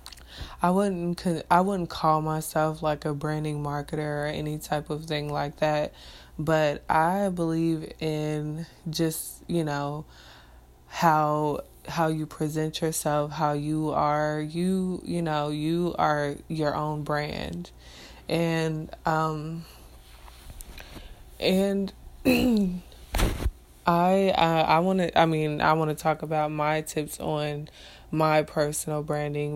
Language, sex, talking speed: English, female, 125 wpm